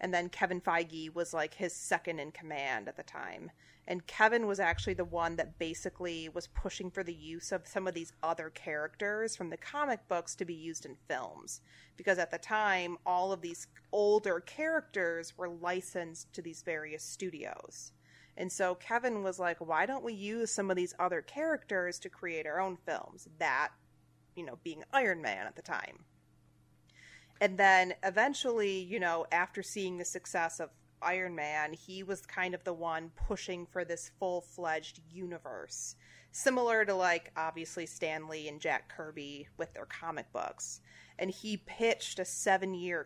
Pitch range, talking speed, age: 165-195 Hz, 175 wpm, 30-49